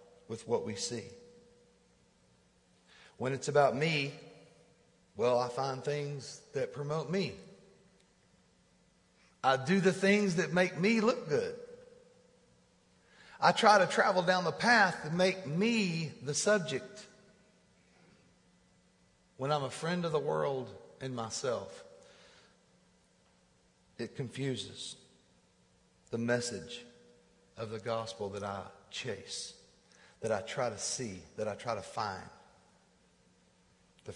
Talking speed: 115 wpm